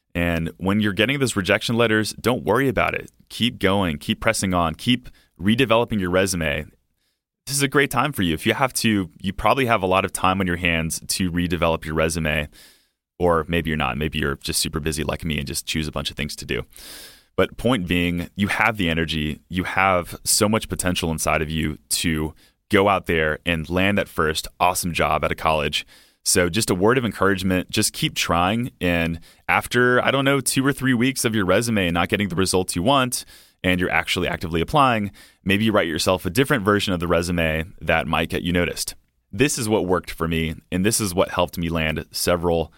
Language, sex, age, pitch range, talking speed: English, male, 30-49, 80-105 Hz, 215 wpm